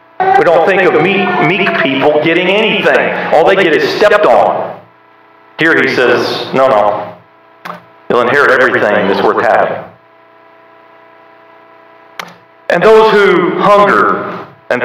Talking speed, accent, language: 125 wpm, American, English